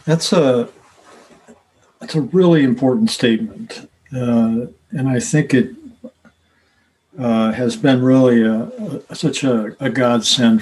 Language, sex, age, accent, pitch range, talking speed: English, male, 60-79, American, 120-160 Hz, 125 wpm